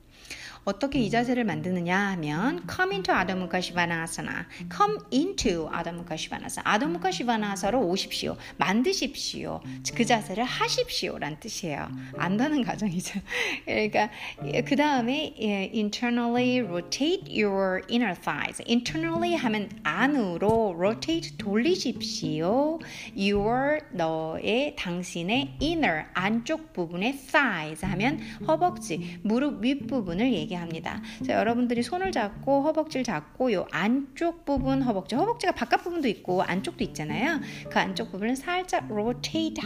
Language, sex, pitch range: Korean, female, 180-270 Hz